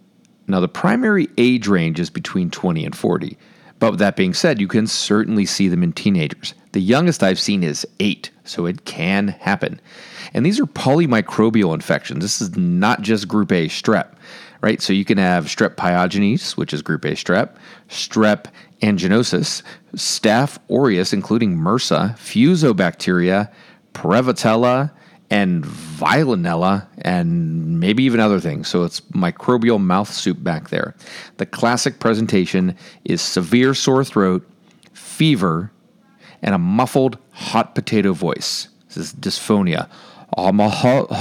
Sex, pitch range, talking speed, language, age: male, 100-165 Hz, 145 wpm, Hebrew, 30-49